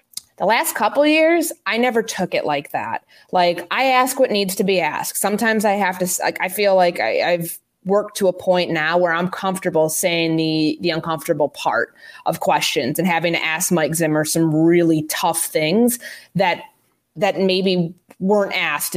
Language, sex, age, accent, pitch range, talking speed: English, female, 20-39, American, 170-260 Hz, 185 wpm